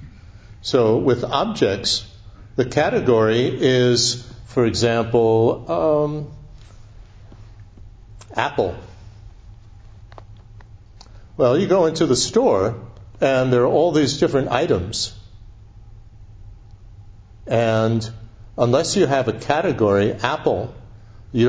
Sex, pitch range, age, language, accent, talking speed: male, 105-120 Hz, 60-79, English, American, 85 wpm